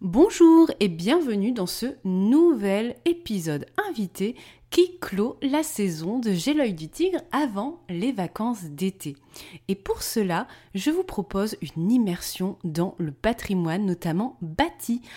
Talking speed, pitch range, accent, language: 135 wpm, 165-240 Hz, French, French